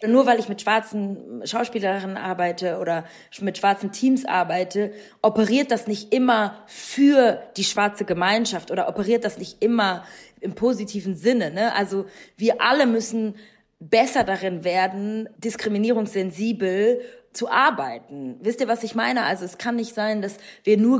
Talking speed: 150 wpm